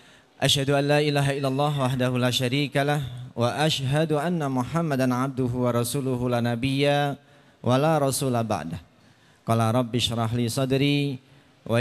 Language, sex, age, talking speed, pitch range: Indonesian, male, 40-59, 135 wpm, 105-130 Hz